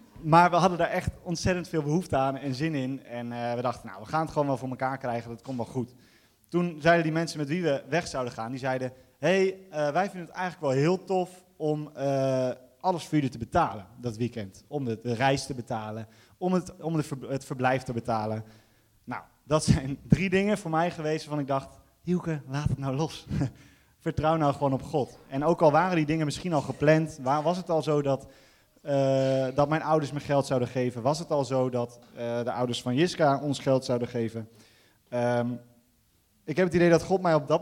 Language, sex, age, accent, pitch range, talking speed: Dutch, male, 20-39, Dutch, 125-160 Hz, 215 wpm